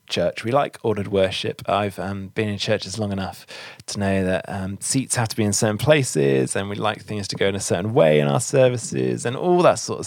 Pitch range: 95-115 Hz